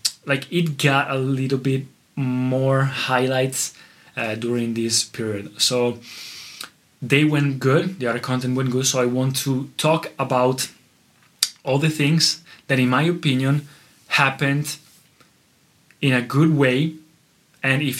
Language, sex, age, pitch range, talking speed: Italian, male, 20-39, 125-150 Hz, 135 wpm